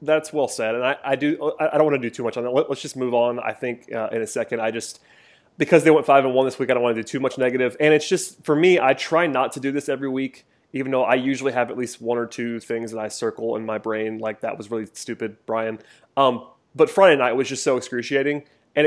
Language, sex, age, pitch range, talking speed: English, male, 30-49, 120-145 Hz, 285 wpm